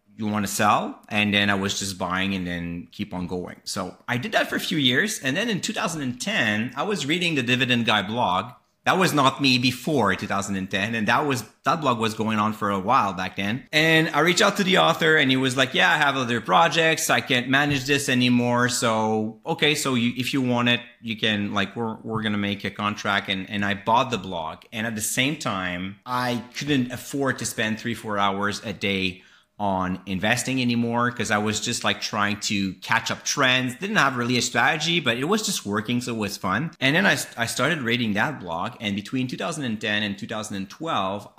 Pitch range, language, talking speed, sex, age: 105-135 Hz, English, 220 wpm, male, 30-49